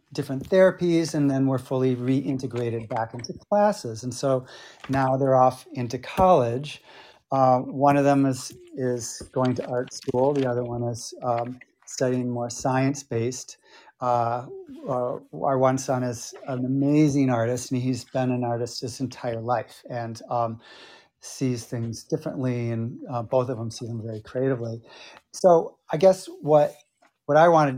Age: 40-59